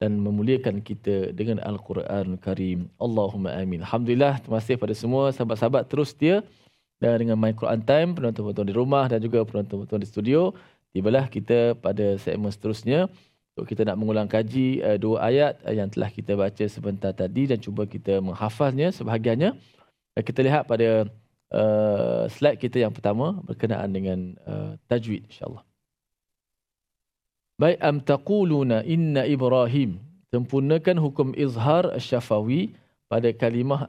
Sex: male